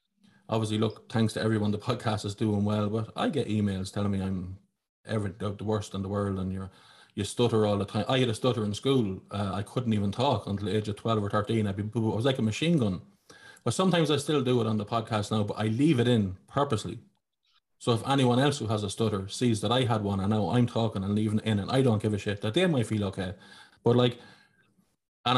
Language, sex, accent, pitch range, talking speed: English, male, Irish, 105-130 Hz, 255 wpm